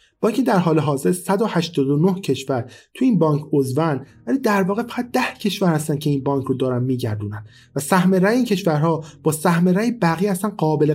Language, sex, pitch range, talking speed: Persian, male, 140-185 Hz, 185 wpm